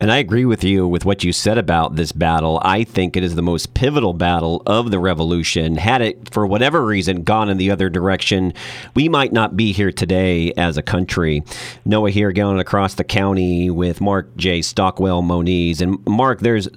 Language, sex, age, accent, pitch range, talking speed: English, male, 40-59, American, 90-120 Hz, 200 wpm